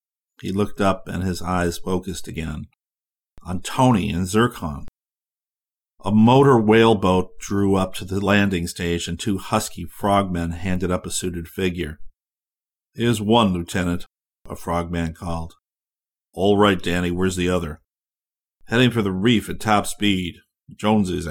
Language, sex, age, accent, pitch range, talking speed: English, male, 50-69, American, 85-100 Hz, 145 wpm